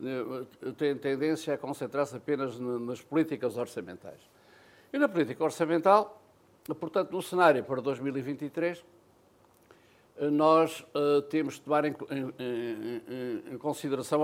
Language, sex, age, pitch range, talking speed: Portuguese, male, 60-79, 130-155 Hz, 95 wpm